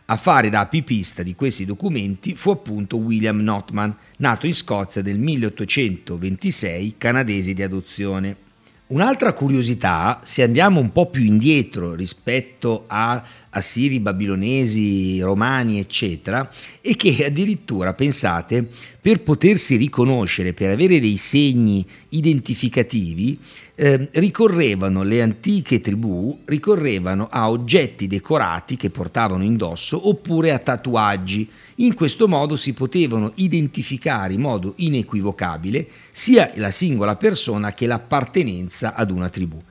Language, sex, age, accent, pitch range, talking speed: Italian, male, 50-69, native, 100-140 Hz, 120 wpm